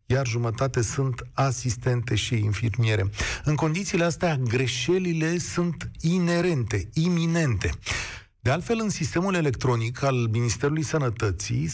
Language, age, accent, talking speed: Romanian, 40-59, native, 105 wpm